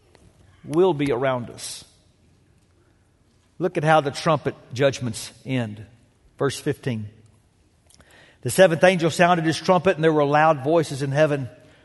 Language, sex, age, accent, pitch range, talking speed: English, male, 50-69, American, 170-275 Hz, 130 wpm